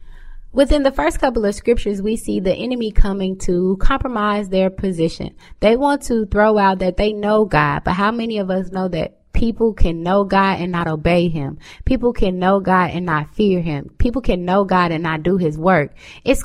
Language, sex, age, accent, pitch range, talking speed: English, female, 20-39, American, 175-220 Hz, 210 wpm